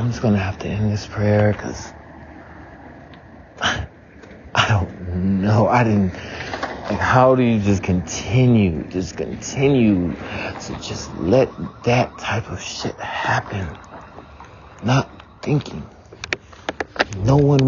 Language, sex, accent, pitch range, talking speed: English, male, American, 105-140 Hz, 115 wpm